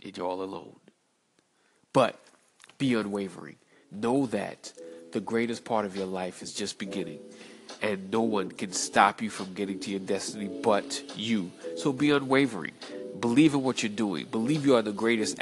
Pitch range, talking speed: 105-130 Hz, 165 wpm